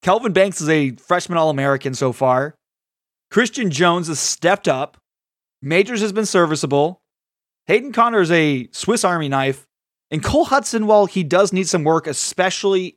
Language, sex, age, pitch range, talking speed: English, male, 20-39, 150-180 Hz, 160 wpm